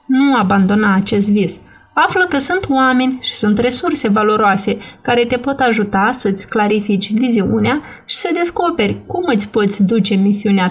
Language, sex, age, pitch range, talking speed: Romanian, female, 30-49, 215-260 Hz, 150 wpm